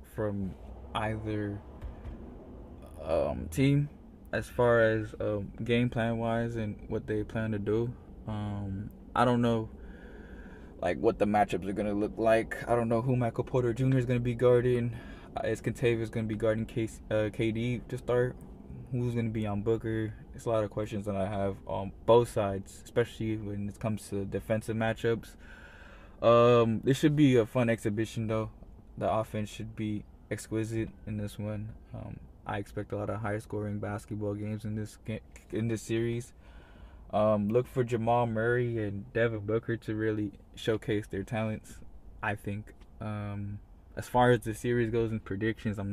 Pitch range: 100-115 Hz